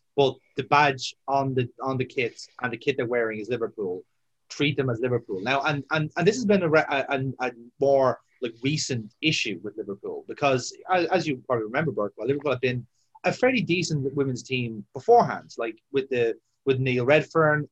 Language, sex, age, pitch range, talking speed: English, male, 30-49, 125-155 Hz, 195 wpm